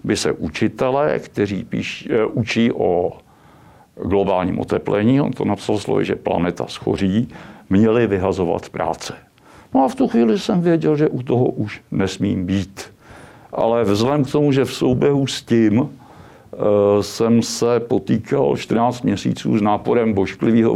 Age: 60-79